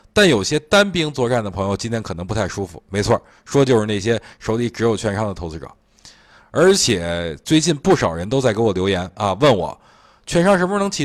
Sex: male